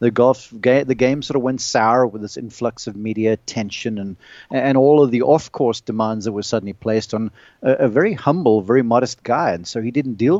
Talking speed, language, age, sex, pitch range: 220 wpm, English, 40-59, male, 110-140 Hz